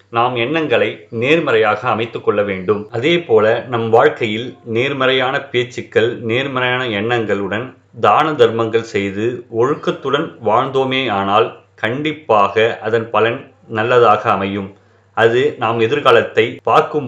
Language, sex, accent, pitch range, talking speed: Tamil, male, native, 105-135 Hz, 100 wpm